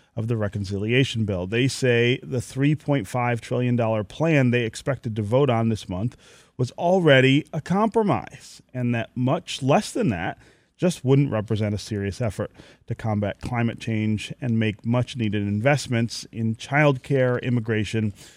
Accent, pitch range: American, 110-135 Hz